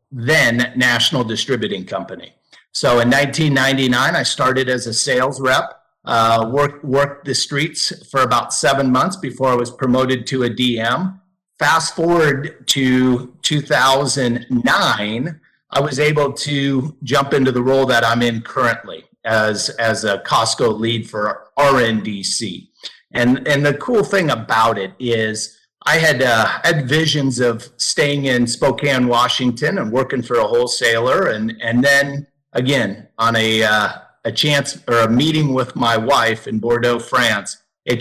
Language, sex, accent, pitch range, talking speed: English, male, American, 120-140 Hz, 150 wpm